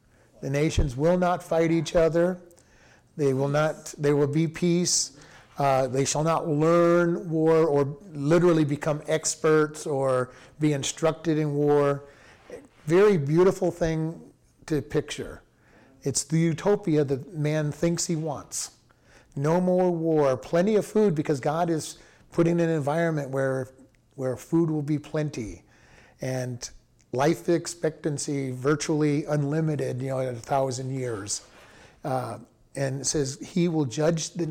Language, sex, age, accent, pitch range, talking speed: English, male, 40-59, American, 140-170 Hz, 135 wpm